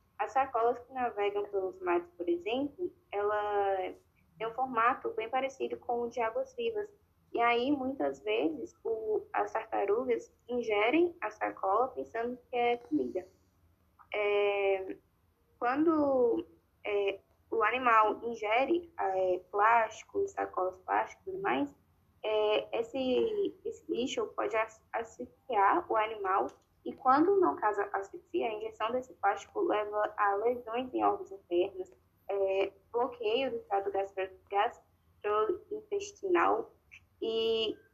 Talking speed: 120 wpm